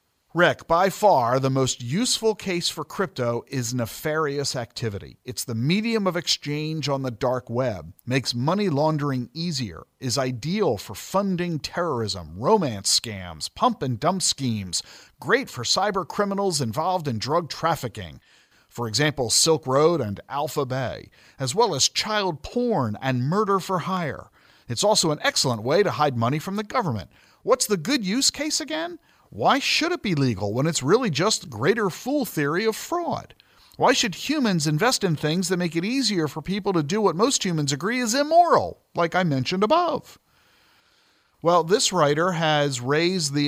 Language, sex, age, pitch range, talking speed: English, male, 50-69, 125-185 Hz, 165 wpm